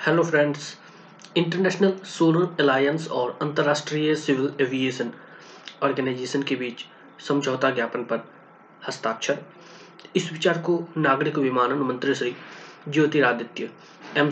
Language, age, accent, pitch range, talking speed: Hindi, 20-39, native, 135-165 Hz, 90 wpm